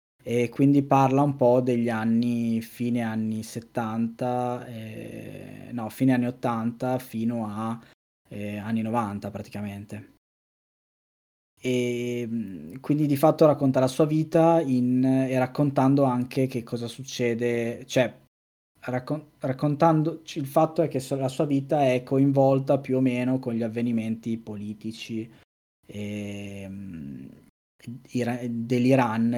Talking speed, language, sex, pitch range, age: 115 wpm, Italian, male, 110-130 Hz, 20-39